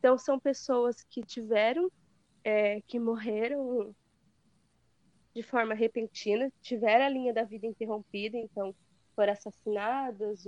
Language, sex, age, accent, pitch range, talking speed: Portuguese, female, 20-39, Brazilian, 210-265 Hz, 110 wpm